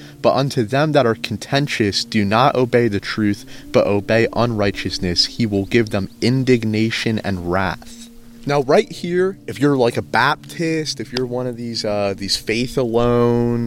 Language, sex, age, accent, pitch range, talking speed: English, male, 30-49, American, 110-140 Hz, 165 wpm